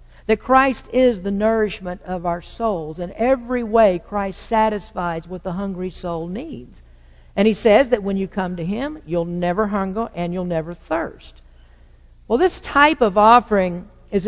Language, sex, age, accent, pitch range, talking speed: English, female, 50-69, American, 175-225 Hz, 170 wpm